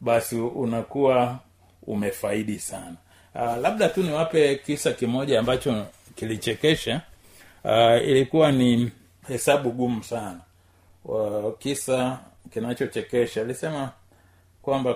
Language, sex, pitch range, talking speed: Swahili, male, 95-130 Hz, 90 wpm